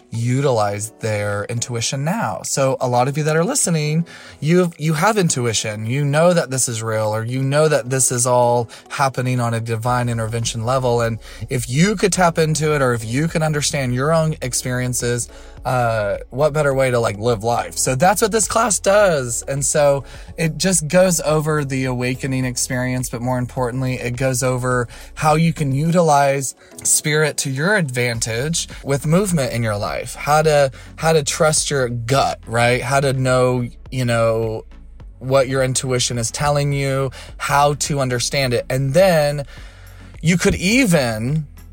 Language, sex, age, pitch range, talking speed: English, male, 20-39, 115-150 Hz, 170 wpm